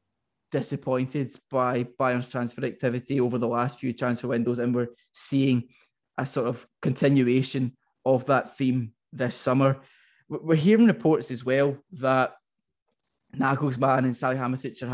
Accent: British